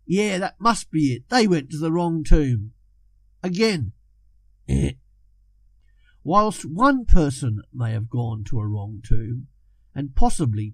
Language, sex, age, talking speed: English, male, 50-69, 135 wpm